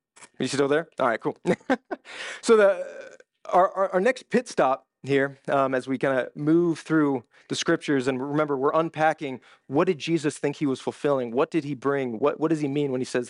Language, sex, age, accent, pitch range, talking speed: English, male, 30-49, American, 140-185 Hz, 215 wpm